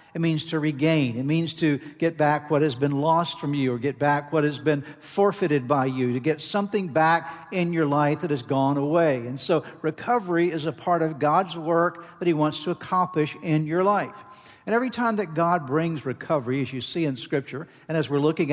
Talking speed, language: 220 wpm, English